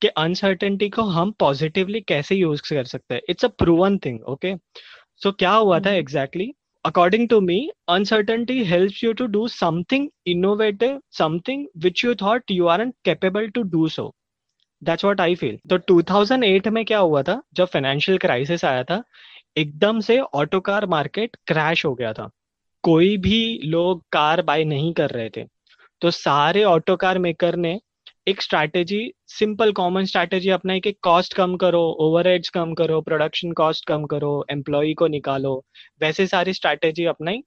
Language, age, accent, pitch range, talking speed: Hindi, 20-39, native, 160-205 Hz, 165 wpm